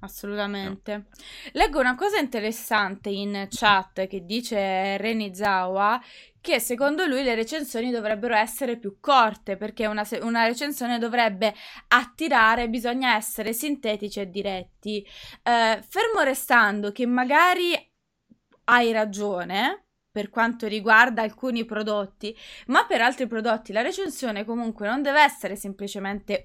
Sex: female